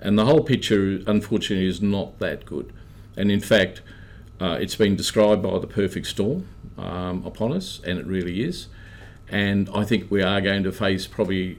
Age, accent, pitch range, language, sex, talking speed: 50-69, Australian, 95-105 Hz, English, male, 185 wpm